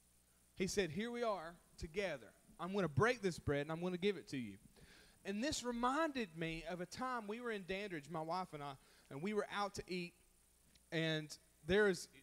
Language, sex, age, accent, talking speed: English, male, 30-49, American, 210 wpm